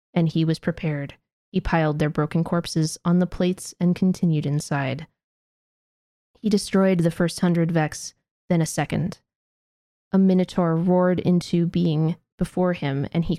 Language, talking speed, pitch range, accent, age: English, 150 wpm, 150-180 Hz, American, 20-39